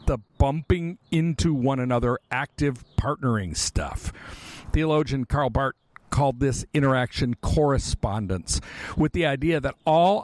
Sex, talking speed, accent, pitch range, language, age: male, 115 wpm, American, 115-155 Hz, English, 50-69